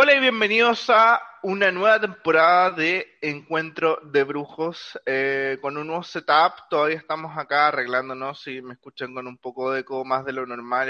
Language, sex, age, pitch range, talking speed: Spanish, male, 20-39, 145-185 Hz, 175 wpm